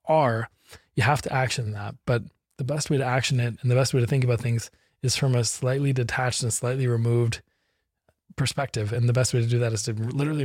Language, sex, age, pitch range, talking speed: English, male, 20-39, 115-135 Hz, 230 wpm